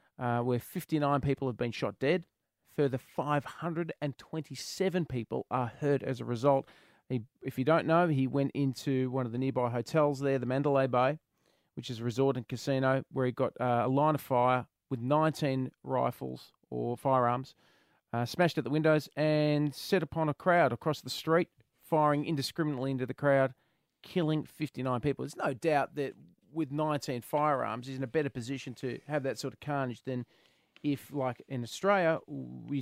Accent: Australian